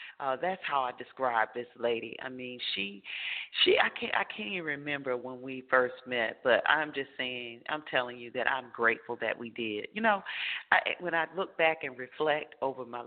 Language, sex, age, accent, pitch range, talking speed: English, female, 40-59, American, 125-155 Hz, 205 wpm